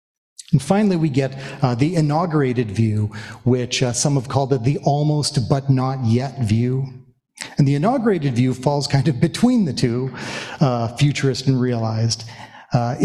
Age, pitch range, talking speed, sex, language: 40-59, 125-155 Hz, 160 wpm, male, English